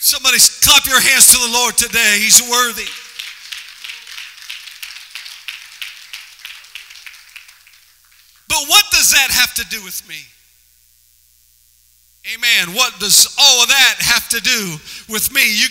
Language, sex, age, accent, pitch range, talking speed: English, male, 50-69, American, 195-255 Hz, 120 wpm